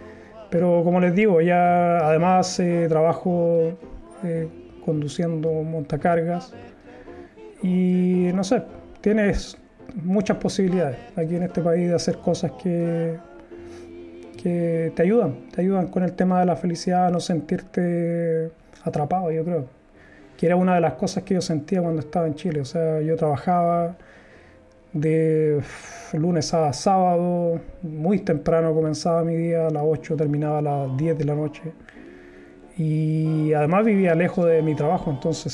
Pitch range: 155-175 Hz